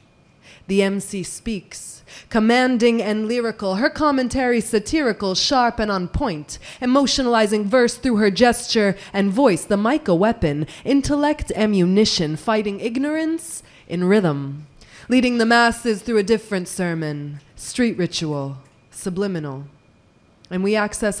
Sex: female